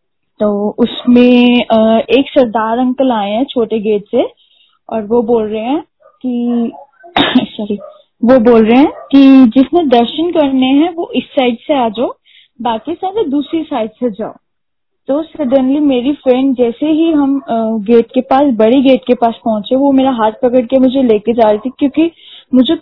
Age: 10-29